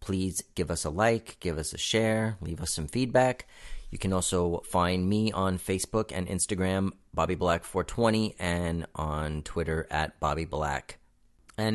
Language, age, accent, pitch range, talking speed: English, 30-49, American, 90-110 Hz, 150 wpm